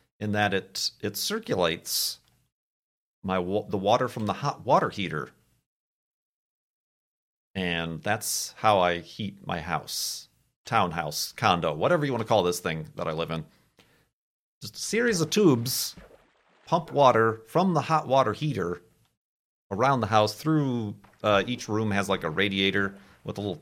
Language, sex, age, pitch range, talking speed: English, male, 40-59, 100-135 Hz, 150 wpm